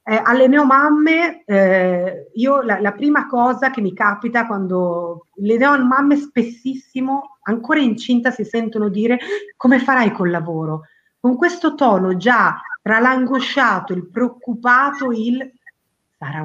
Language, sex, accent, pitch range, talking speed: Italian, female, native, 185-260 Hz, 125 wpm